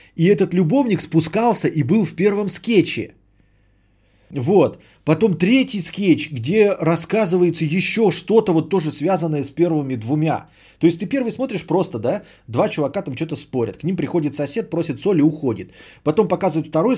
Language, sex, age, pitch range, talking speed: Bulgarian, male, 20-39, 110-160 Hz, 165 wpm